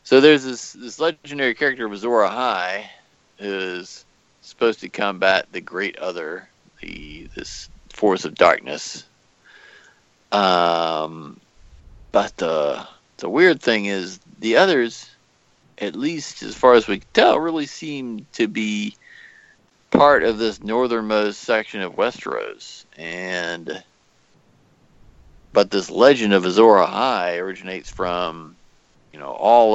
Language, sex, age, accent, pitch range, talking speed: English, male, 50-69, American, 95-125 Hz, 125 wpm